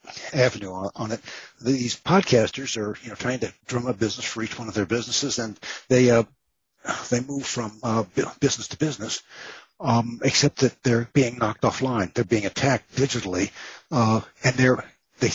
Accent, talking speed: American, 175 wpm